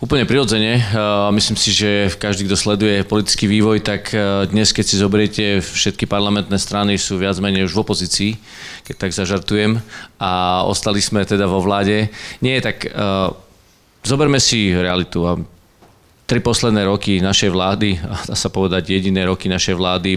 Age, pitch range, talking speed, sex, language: 40-59, 95-105 Hz, 160 wpm, male, Slovak